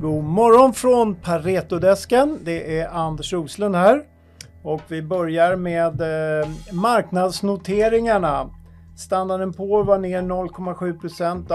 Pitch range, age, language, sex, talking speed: 160-210 Hz, 50-69, Swedish, male, 100 wpm